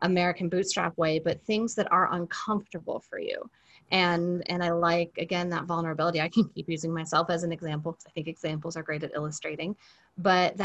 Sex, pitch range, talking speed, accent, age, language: female, 165-195 Hz, 190 wpm, American, 30-49, English